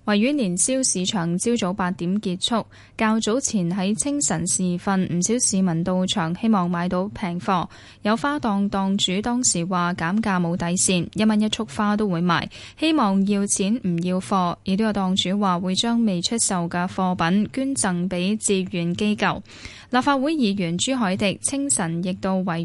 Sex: female